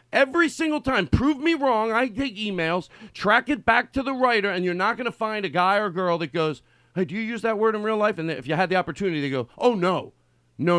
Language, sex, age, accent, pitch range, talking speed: English, male, 40-59, American, 140-220 Hz, 265 wpm